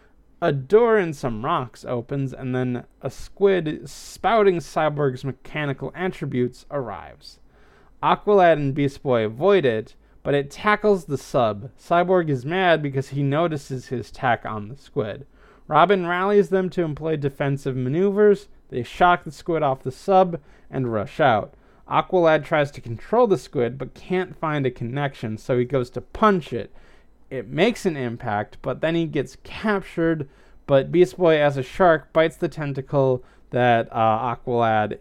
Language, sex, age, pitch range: English, male, 30-49, 125-175 Hz